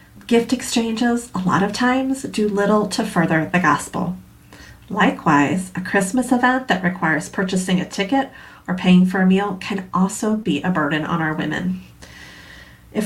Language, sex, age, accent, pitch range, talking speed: English, female, 30-49, American, 180-240 Hz, 160 wpm